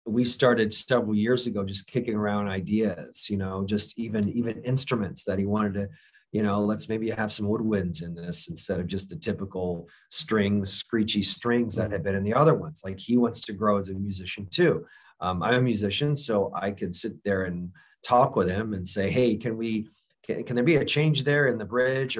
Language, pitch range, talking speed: English, 100-120 Hz, 220 wpm